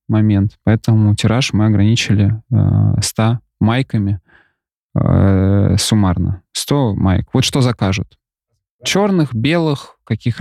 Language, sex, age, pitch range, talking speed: Russian, male, 20-39, 110-145 Hz, 105 wpm